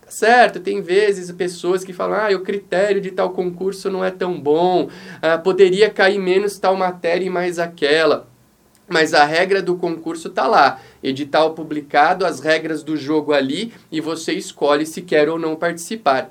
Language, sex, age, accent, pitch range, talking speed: Portuguese, male, 20-39, Brazilian, 170-220 Hz, 175 wpm